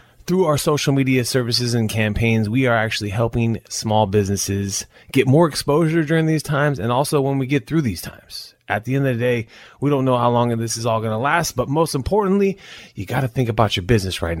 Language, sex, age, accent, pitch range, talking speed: English, male, 30-49, American, 105-140 Hz, 230 wpm